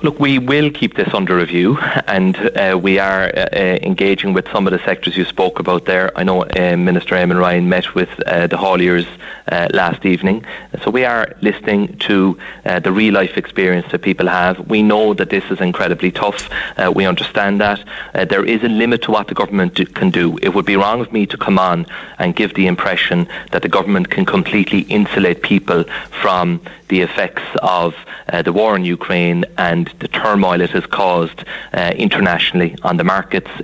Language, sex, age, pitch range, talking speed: English, male, 30-49, 90-100 Hz, 195 wpm